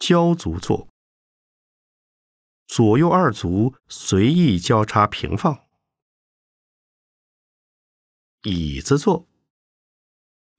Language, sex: Chinese, male